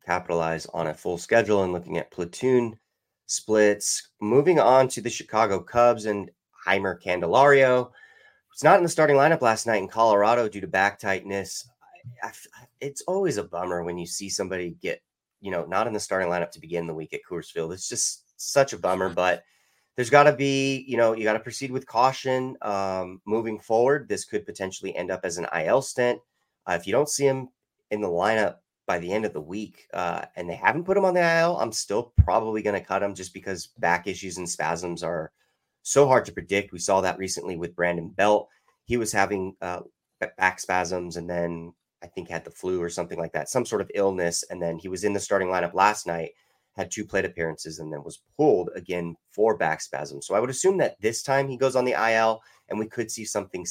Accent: American